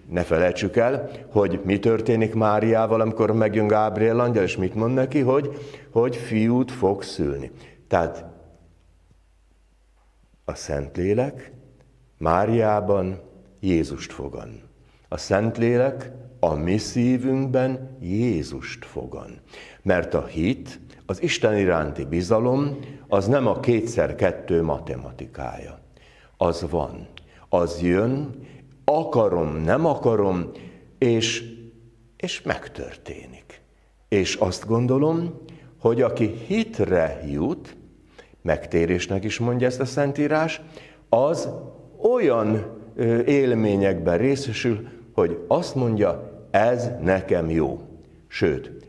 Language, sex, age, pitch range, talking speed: Hungarian, male, 60-79, 85-125 Hz, 95 wpm